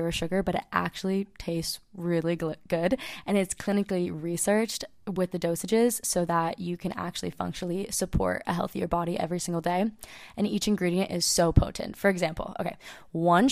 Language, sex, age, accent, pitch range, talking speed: English, female, 20-39, American, 175-215 Hz, 165 wpm